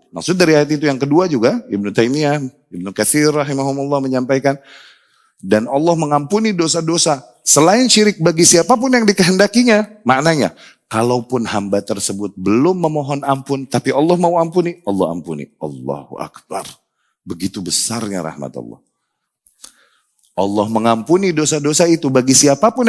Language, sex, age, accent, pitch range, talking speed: Indonesian, male, 30-49, native, 115-185 Hz, 125 wpm